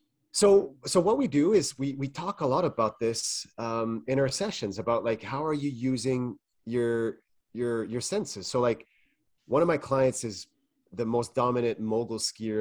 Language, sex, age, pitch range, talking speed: English, male, 30-49, 115-150 Hz, 185 wpm